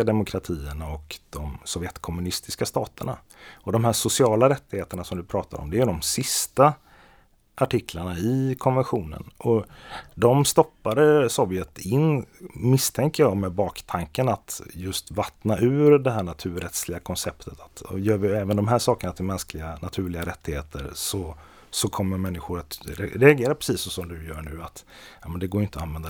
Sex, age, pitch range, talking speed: male, 30-49, 85-120 Hz, 155 wpm